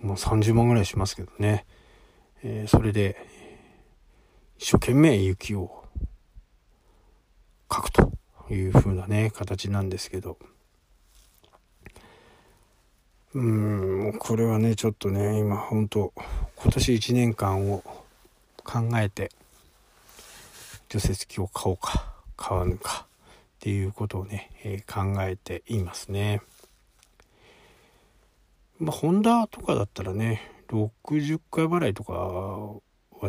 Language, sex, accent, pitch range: Japanese, male, native, 95-115 Hz